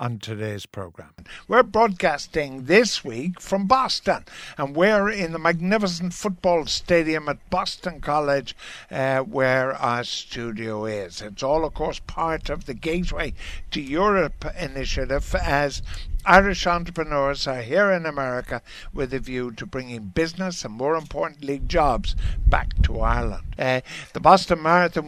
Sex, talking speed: male, 140 wpm